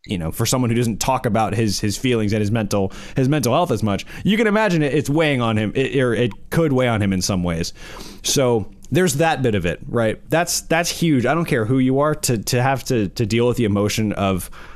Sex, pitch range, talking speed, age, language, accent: male, 110-155 Hz, 250 wpm, 20-39, English, American